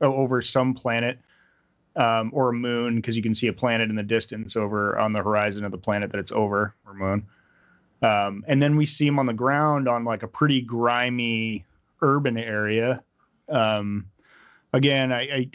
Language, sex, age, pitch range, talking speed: English, male, 30-49, 105-130 Hz, 180 wpm